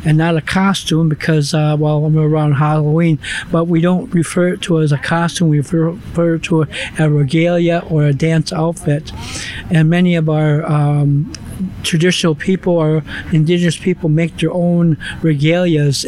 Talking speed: 175 wpm